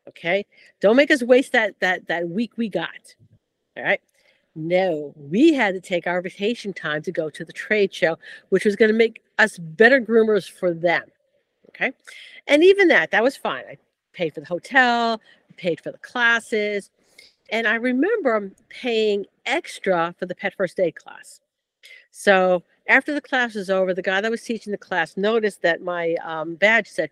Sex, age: female, 50-69